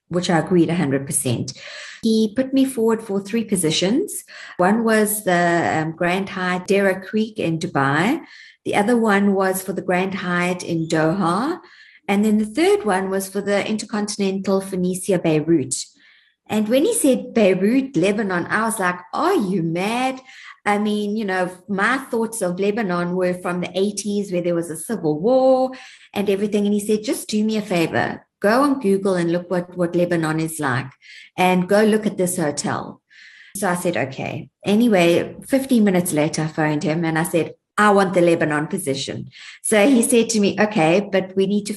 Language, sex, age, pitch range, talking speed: English, female, 50-69, 175-215 Hz, 185 wpm